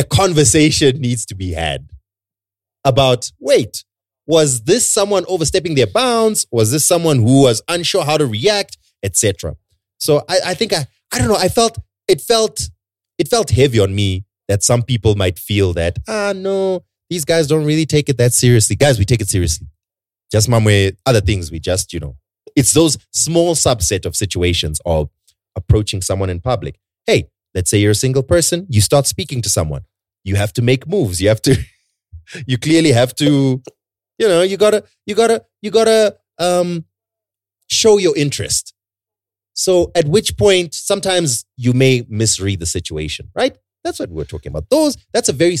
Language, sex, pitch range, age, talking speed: English, male, 95-155 Hz, 30-49, 180 wpm